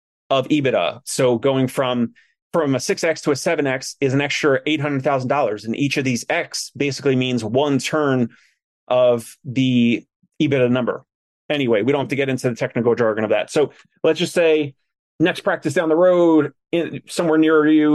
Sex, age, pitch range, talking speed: male, 30-49, 125-150 Hz, 175 wpm